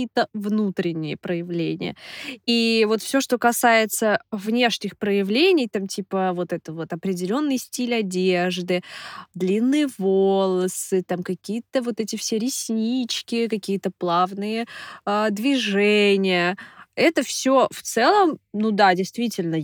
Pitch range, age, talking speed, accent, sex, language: 185-230 Hz, 20-39, 115 wpm, native, female, Russian